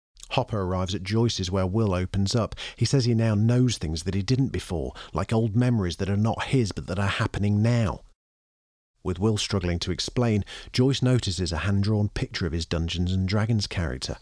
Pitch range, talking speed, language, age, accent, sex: 90-110 Hz, 190 wpm, English, 40-59, British, male